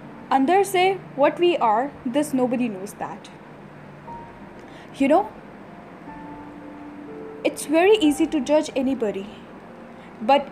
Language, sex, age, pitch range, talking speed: Urdu, female, 10-29, 240-310 Hz, 95 wpm